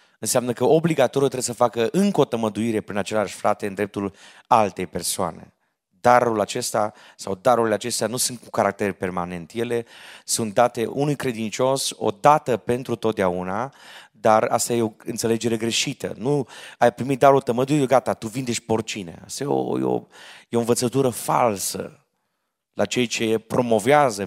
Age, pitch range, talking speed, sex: 30-49, 95-125 Hz, 155 wpm, male